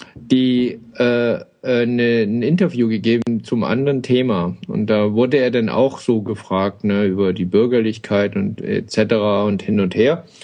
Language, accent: German, German